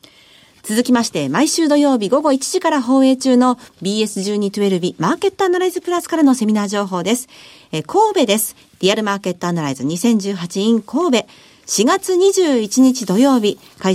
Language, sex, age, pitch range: Japanese, female, 50-69, 195-285 Hz